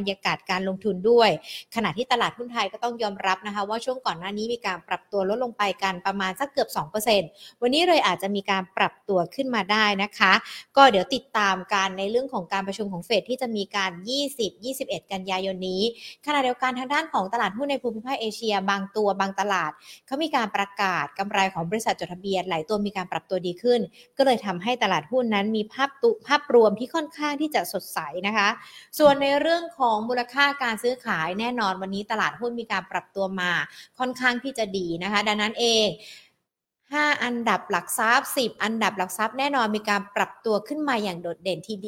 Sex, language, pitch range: female, Thai, 195-250 Hz